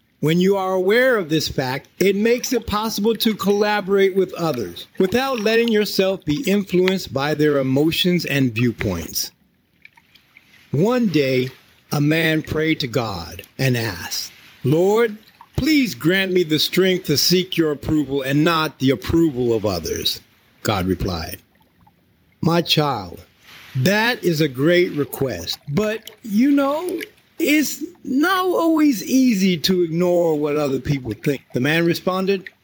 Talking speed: 140 wpm